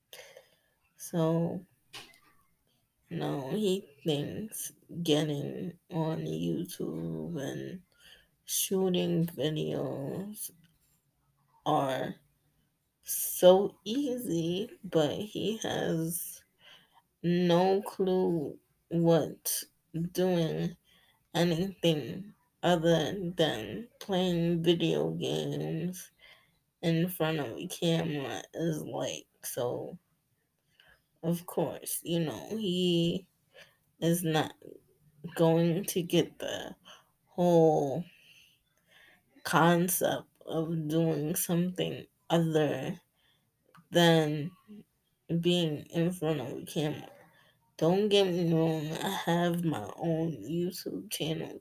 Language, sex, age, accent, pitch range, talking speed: English, female, 20-39, American, 155-180 Hz, 80 wpm